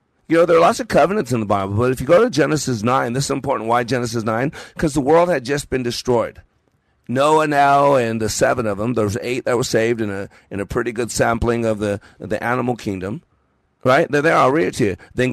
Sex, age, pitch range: male, 50-69, 110-130 Hz